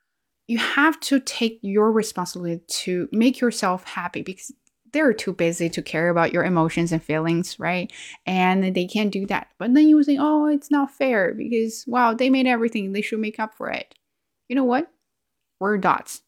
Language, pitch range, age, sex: Chinese, 175-225 Hz, 20-39, female